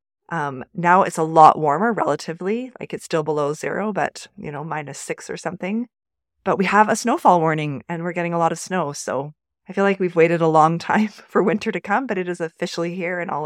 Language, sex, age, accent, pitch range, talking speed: English, female, 30-49, American, 160-215 Hz, 230 wpm